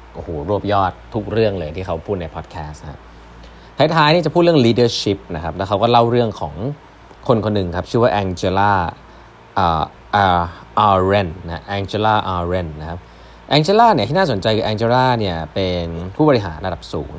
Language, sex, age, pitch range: Thai, male, 20-39, 90-120 Hz